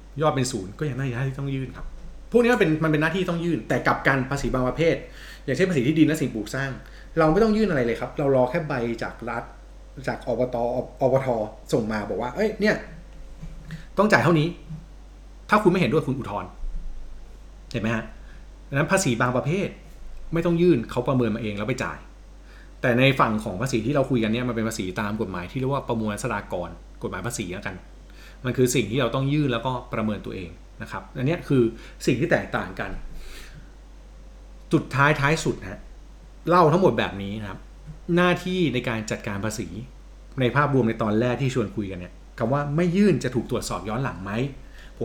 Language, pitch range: Thai, 115-155 Hz